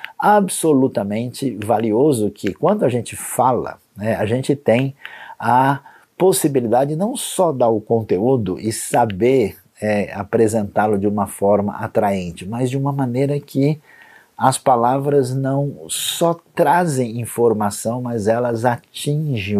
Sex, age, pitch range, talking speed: male, 50-69, 105-145 Hz, 125 wpm